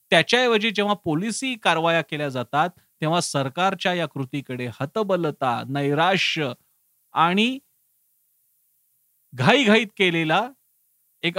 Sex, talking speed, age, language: male, 95 wpm, 40-59, Marathi